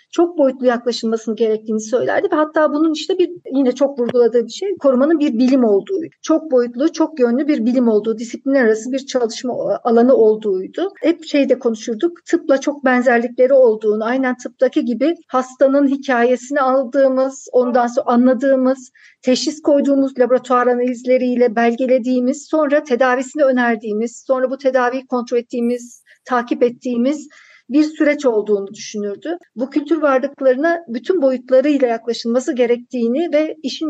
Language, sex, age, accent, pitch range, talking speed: Turkish, female, 50-69, native, 240-295 Hz, 135 wpm